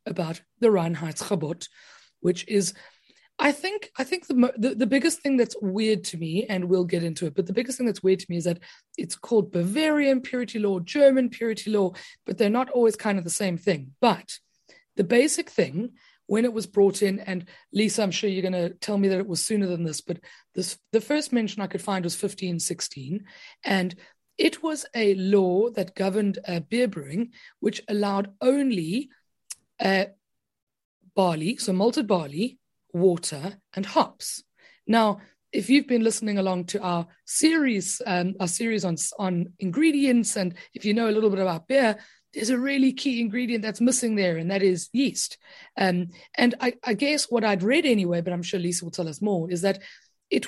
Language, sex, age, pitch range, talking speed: English, female, 30-49, 185-245 Hz, 195 wpm